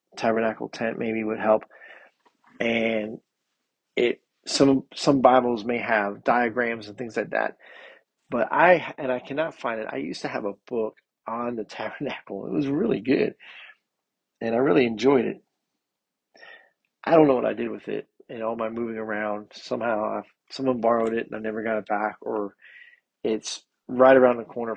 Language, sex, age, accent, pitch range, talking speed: English, male, 40-59, American, 110-125 Hz, 180 wpm